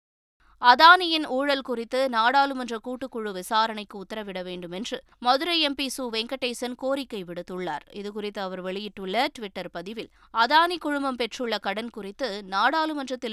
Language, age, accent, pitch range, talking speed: Tamil, 20-39, native, 210-265 Hz, 115 wpm